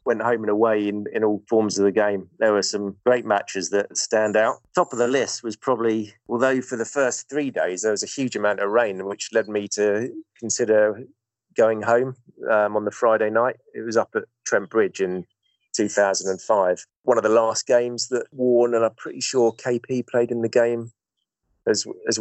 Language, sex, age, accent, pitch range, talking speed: English, male, 30-49, British, 100-120 Hz, 205 wpm